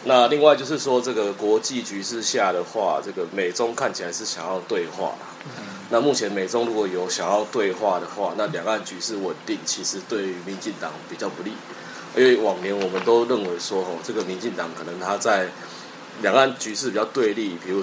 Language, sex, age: Japanese, male, 20-39